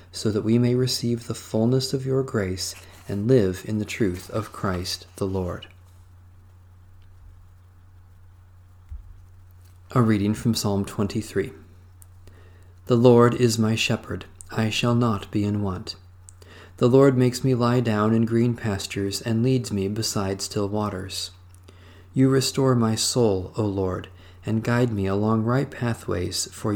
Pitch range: 90-120 Hz